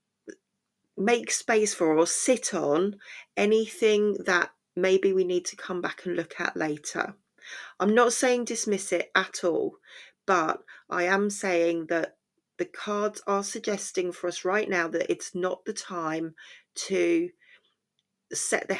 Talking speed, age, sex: 145 wpm, 40-59, female